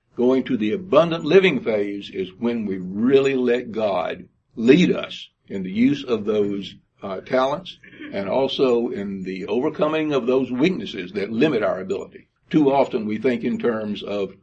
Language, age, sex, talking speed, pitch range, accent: English, 60-79, male, 165 wpm, 110-145 Hz, American